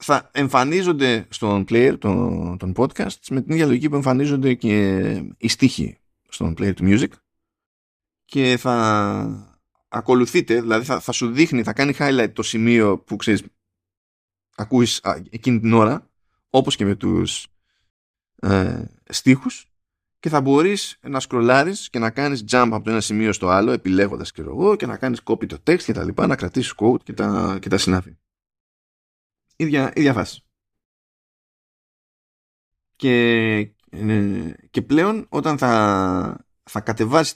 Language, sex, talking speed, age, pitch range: Greek, male, 145 wpm, 20-39, 100-130 Hz